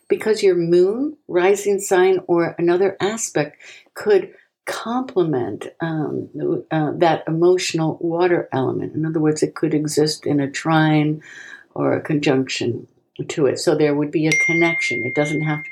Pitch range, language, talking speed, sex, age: 155-195 Hz, English, 145 wpm, female, 60-79